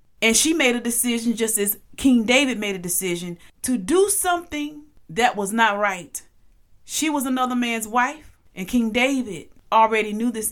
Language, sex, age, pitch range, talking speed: English, female, 30-49, 195-245 Hz, 170 wpm